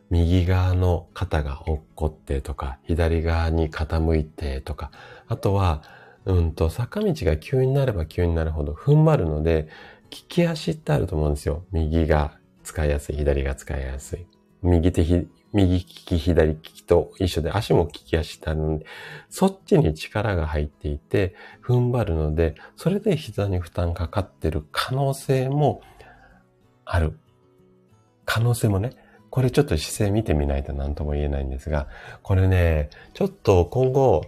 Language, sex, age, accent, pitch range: Japanese, male, 40-59, native, 75-105 Hz